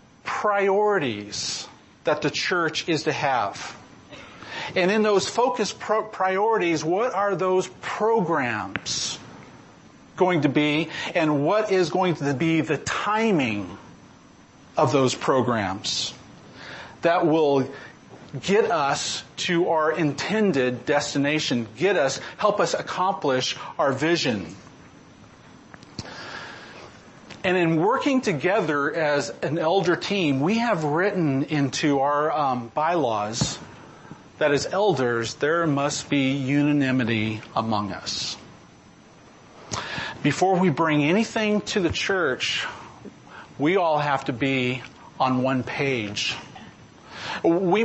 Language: English